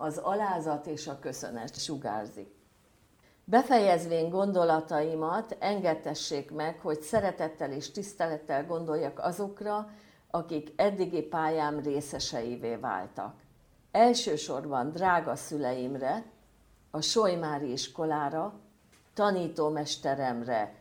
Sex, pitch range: female, 140-180 Hz